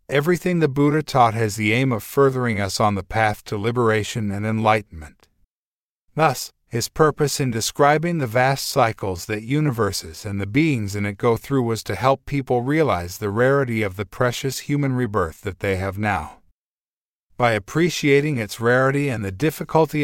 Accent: American